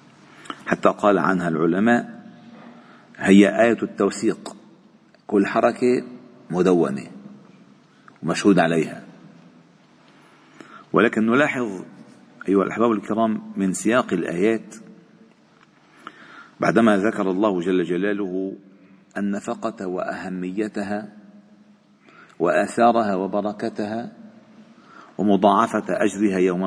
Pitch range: 100-125 Hz